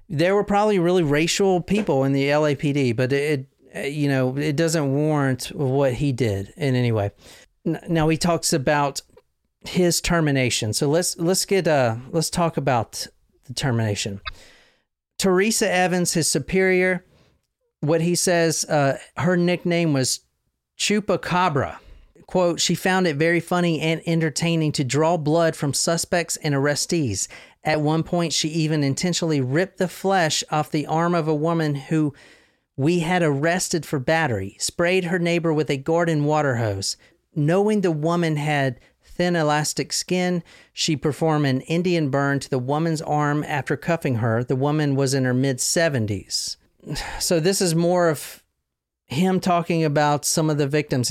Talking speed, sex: 155 wpm, male